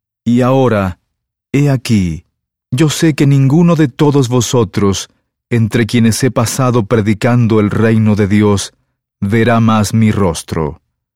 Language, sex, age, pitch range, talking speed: English, male, 40-59, 105-130 Hz, 130 wpm